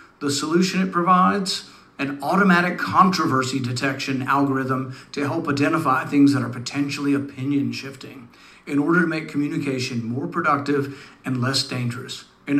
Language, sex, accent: English, male, American